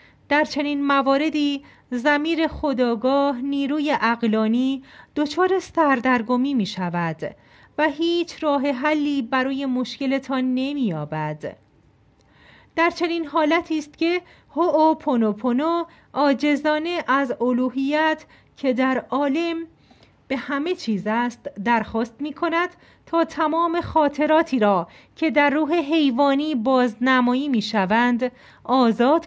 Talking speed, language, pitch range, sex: 105 wpm, Persian, 230-295 Hz, female